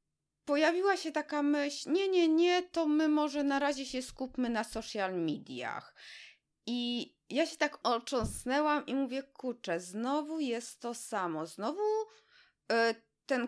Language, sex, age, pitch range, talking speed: Polish, female, 20-39, 245-335 Hz, 145 wpm